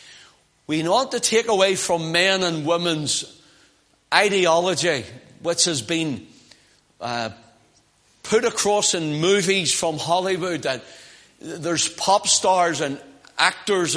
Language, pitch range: English, 165-205 Hz